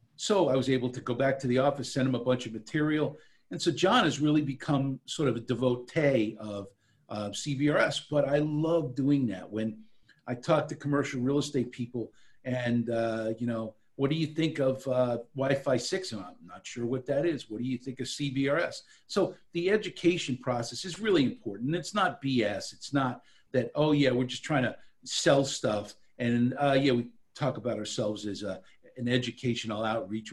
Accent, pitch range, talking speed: American, 120-150 Hz, 200 wpm